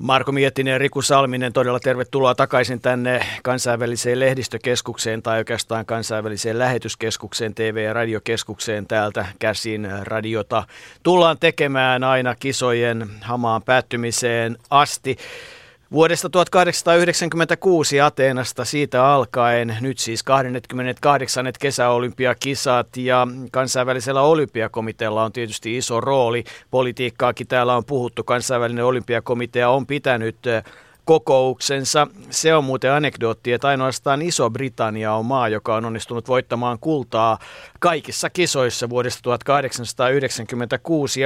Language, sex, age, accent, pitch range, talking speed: Finnish, male, 50-69, native, 115-140 Hz, 100 wpm